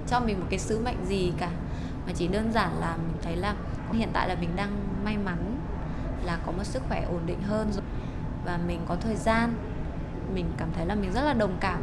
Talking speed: 235 wpm